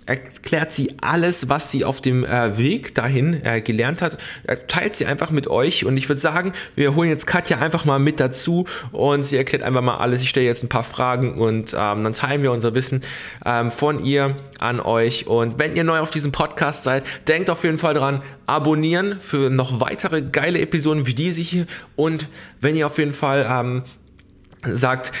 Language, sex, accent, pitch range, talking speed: German, male, German, 120-150 Hz, 200 wpm